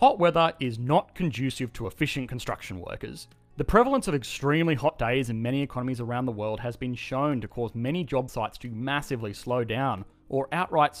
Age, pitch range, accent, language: 30-49, 115-155 Hz, Australian, English